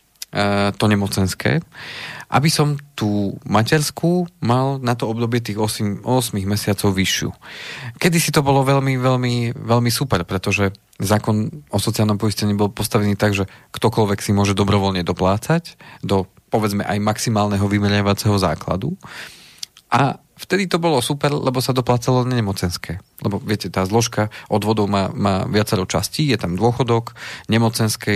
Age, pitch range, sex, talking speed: 30-49, 100-125 Hz, male, 140 wpm